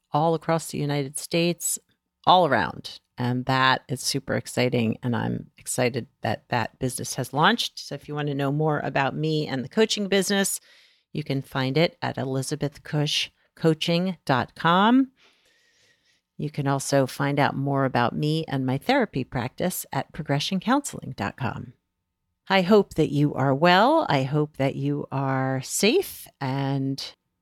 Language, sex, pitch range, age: English, female, 135-175 Hz, 50-69